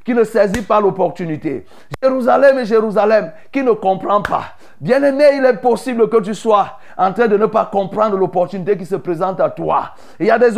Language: French